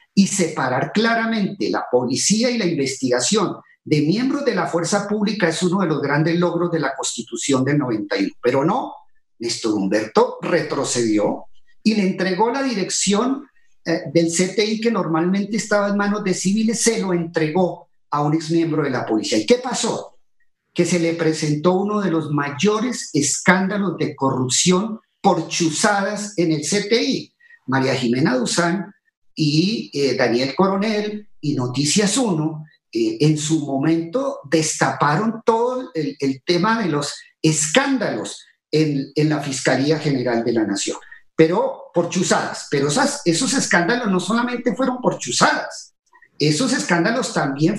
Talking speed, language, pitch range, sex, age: 150 wpm, Spanish, 155-220 Hz, male, 40-59